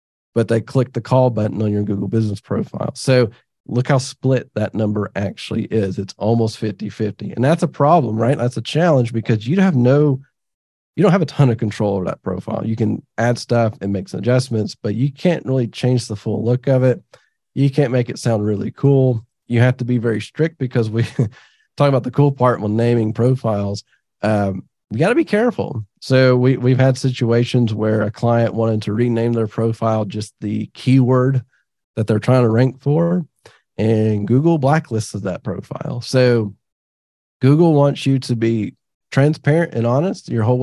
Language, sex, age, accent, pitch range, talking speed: English, male, 40-59, American, 110-135 Hz, 190 wpm